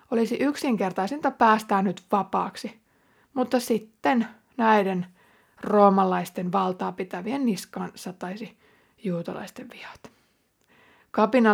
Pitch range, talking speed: 195-235 Hz, 85 wpm